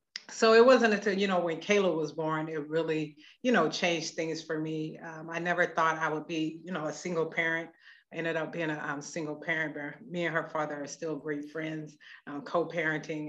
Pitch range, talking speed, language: 155-180 Hz, 220 wpm, English